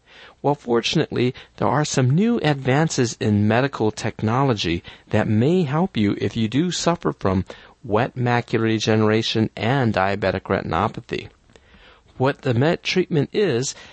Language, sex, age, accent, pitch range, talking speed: English, male, 50-69, American, 110-145 Hz, 130 wpm